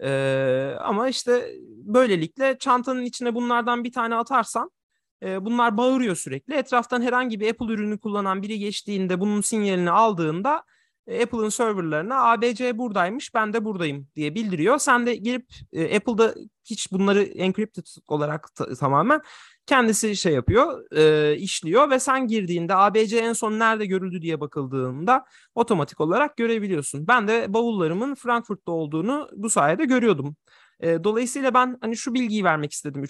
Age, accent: 30-49, native